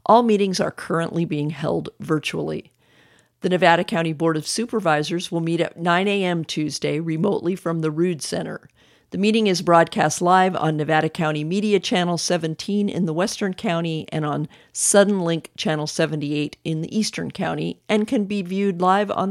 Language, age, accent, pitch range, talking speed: English, 50-69, American, 155-195 Hz, 170 wpm